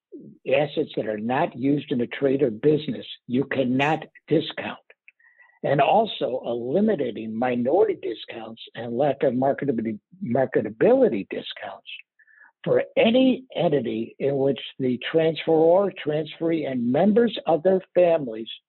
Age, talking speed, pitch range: 60-79, 120 wpm, 135-180 Hz